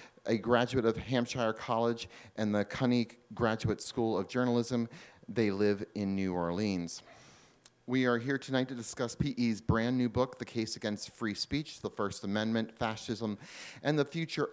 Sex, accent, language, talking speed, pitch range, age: male, American, English, 160 wpm, 105-130 Hz, 30-49